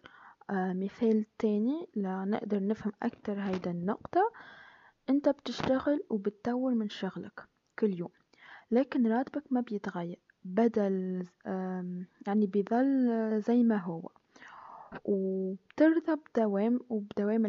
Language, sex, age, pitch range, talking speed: Arabic, female, 20-39, 195-250 Hz, 95 wpm